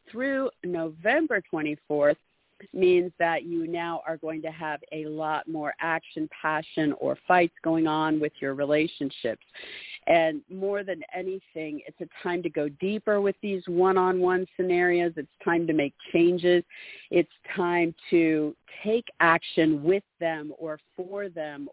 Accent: American